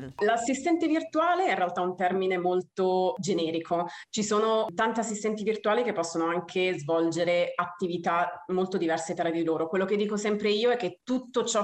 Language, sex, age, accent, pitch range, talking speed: Italian, female, 30-49, native, 170-195 Hz, 170 wpm